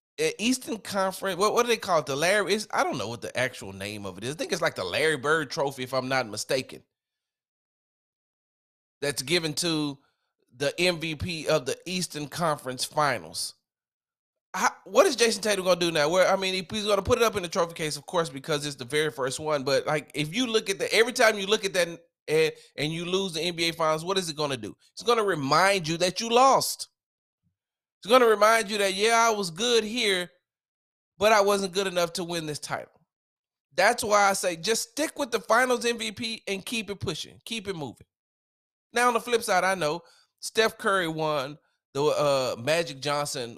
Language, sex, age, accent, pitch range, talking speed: English, male, 30-49, American, 140-210 Hz, 215 wpm